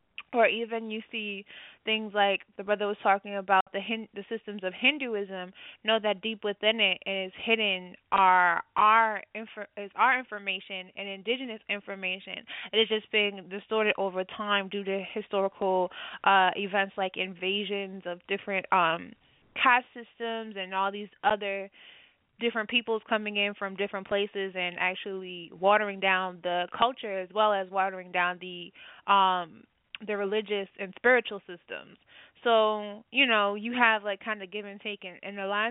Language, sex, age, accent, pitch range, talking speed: English, female, 20-39, American, 195-220 Hz, 165 wpm